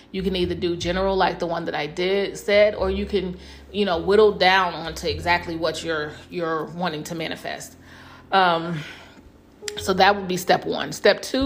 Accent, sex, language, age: American, female, English, 30-49